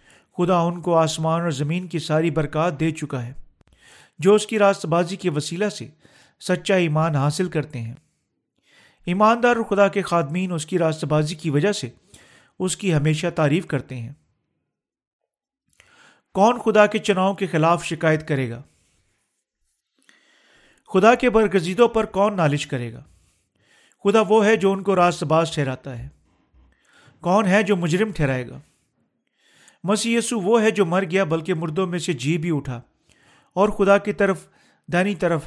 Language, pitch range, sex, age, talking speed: Urdu, 155-200 Hz, male, 40-59, 160 wpm